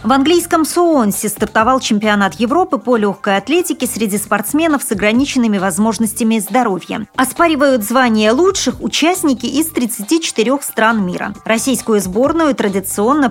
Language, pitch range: Russian, 205-265 Hz